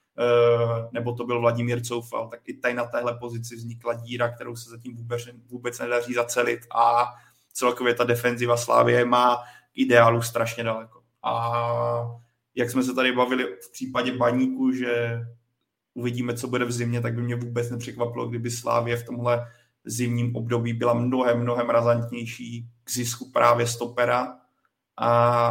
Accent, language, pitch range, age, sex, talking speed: native, Czech, 120-125 Hz, 20-39, male, 155 wpm